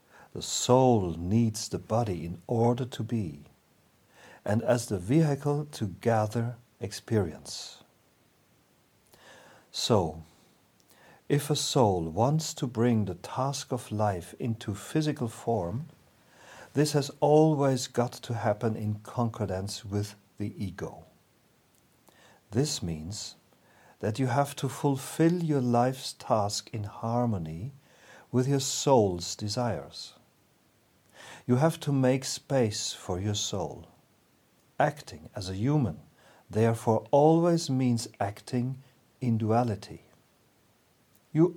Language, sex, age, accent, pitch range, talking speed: English, male, 50-69, German, 105-135 Hz, 110 wpm